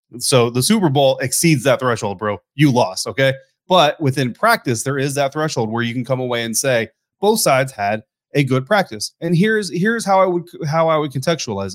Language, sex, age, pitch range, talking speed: English, male, 30-49, 120-155 Hz, 210 wpm